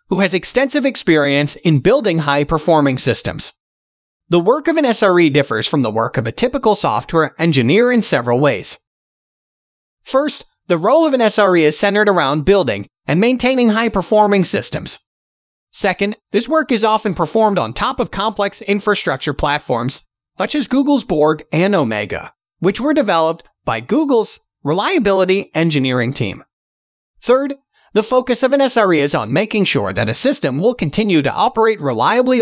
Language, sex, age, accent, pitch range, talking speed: English, male, 30-49, American, 150-225 Hz, 155 wpm